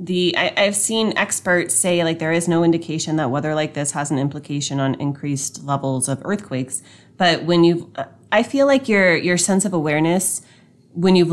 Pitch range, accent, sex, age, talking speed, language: 145-180 Hz, American, female, 30-49, 190 wpm, English